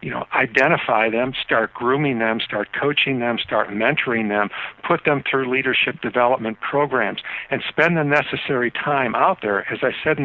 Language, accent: English, American